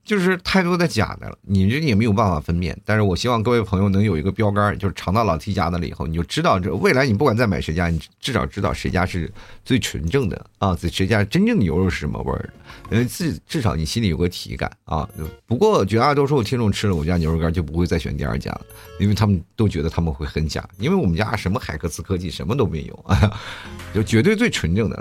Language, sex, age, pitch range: Chinese, male, 50-69, 90-125 Hz